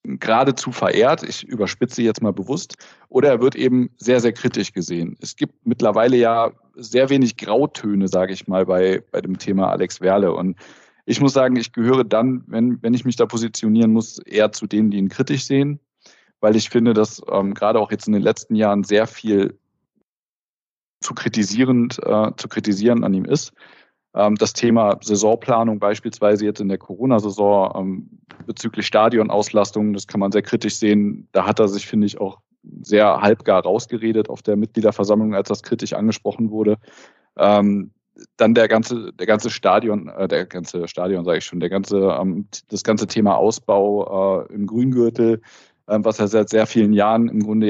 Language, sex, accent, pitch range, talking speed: German, male, German, 100-120 Hz, 165 wpm